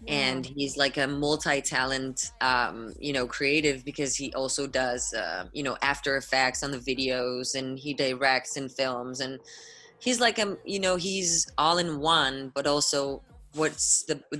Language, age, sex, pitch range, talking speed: Spanish, 20-39, female, 130-155 Hz, 165 wpm